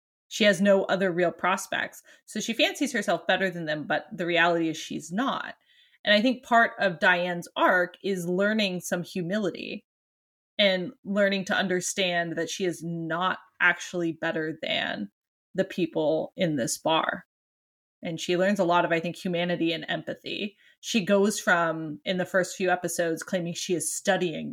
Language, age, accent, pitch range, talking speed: English, 20-39, American, 170-210 Hz, 170 wpm